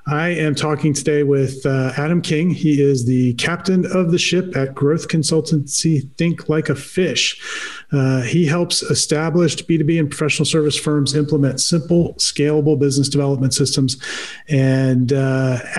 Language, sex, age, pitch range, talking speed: English, male, 40-59, 130-155 Hz, 150 wpm